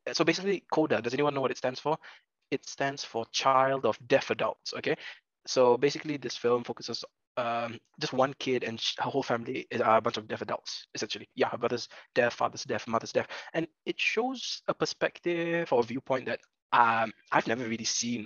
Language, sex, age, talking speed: English, male, 20-39, 195 wpm